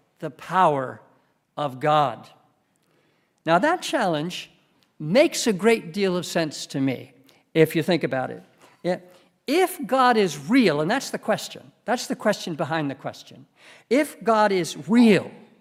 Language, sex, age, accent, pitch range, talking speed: English, male, 60-79, American, 170-235 Hz, 145 wpm